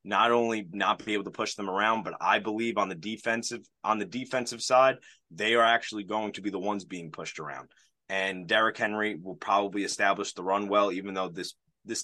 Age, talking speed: 20-39, 215 wpm